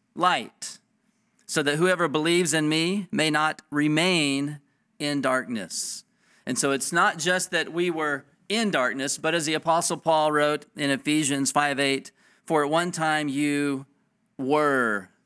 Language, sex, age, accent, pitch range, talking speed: English, male, 40-59, American, 130-170 Hz, 145 wpm